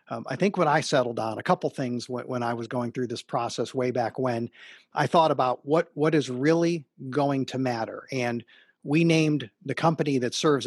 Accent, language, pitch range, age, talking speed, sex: American, English, 130-185 Hz, 50-69, 210 wpm, male